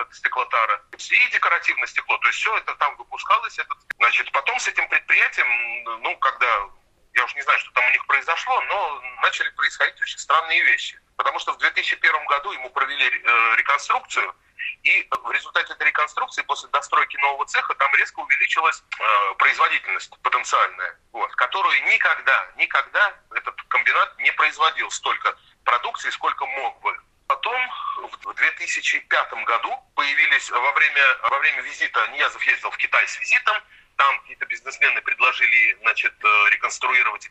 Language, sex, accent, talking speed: Russian, male, native, 145 wpm